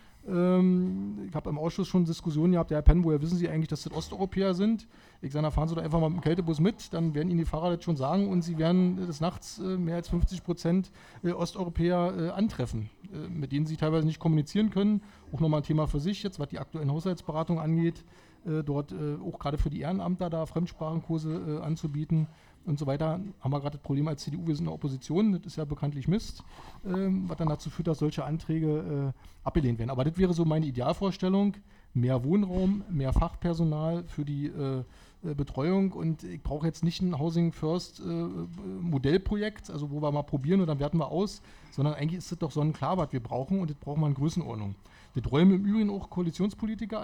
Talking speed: 210 wpm